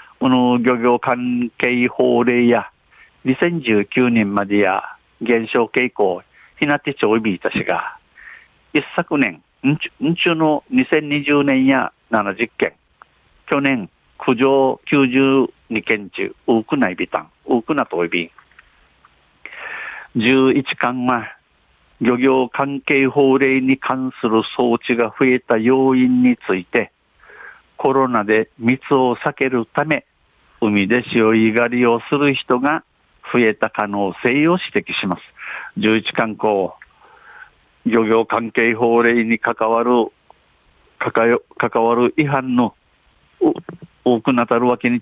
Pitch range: 110-135 Hz